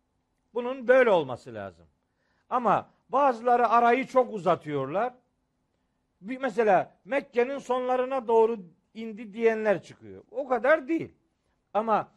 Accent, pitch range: native, 170-255 Hz